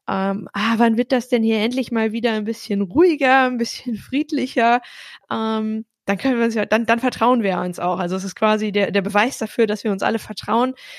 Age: 20-39